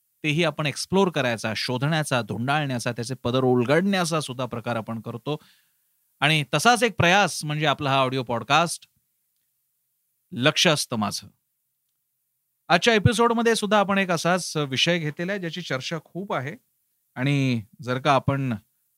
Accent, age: native, 40-59